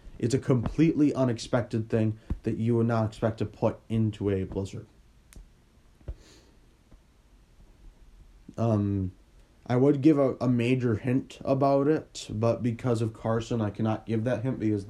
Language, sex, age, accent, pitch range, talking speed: English, male, 30-49, American, 105-130 Hz, 140 wpm